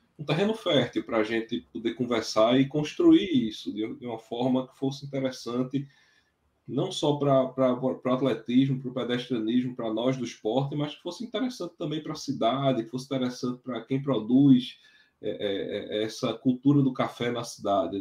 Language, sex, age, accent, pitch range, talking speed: Portuguese, male, 20-39, Brazilian, 130-165 Hz, 170 wpm